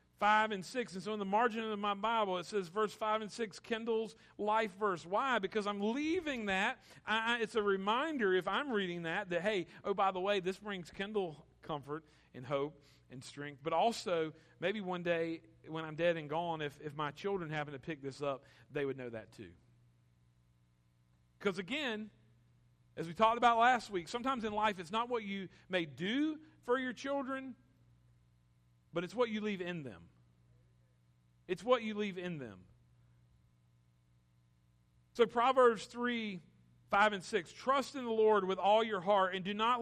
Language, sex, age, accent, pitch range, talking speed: English, male, 40-59, American, 160-215 Hz, 180 wpm